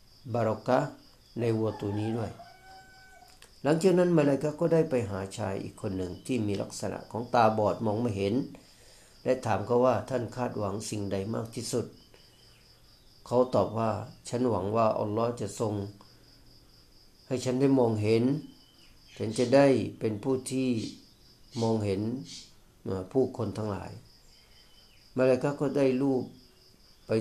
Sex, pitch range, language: male, 105-130 Hz, Thai